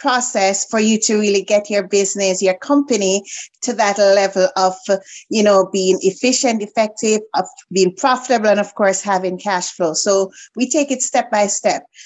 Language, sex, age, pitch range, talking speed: English, female, 30-49, 190-230 Hz, 175 wpm